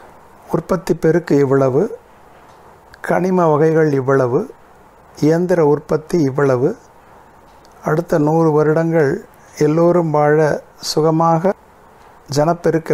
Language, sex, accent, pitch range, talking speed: Tamil, male, native, 145-170 Hz, 75 wpm